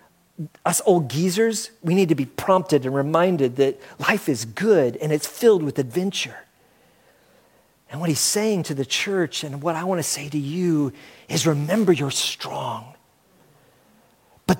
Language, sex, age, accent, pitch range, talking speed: English, male, 40-59, American, 145-200 Hz, 155 wpm